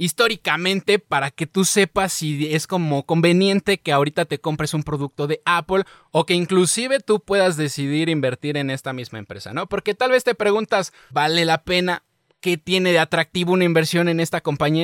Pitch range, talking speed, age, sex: 145-195 Hz, 185 wpm, 20-39, male